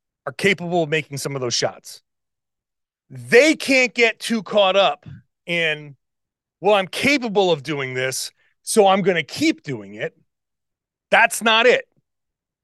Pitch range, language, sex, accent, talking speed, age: 155-220 Hz, English, male, American, 145 wpm, 30-49